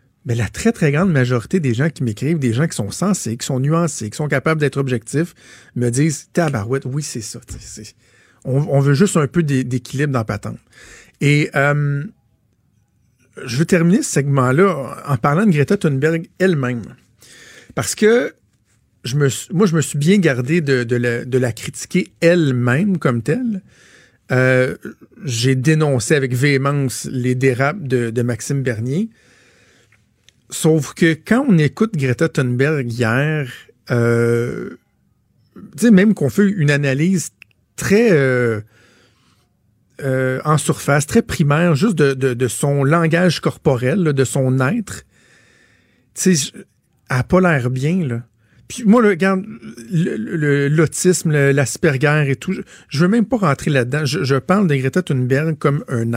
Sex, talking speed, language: male, 160 wpm, French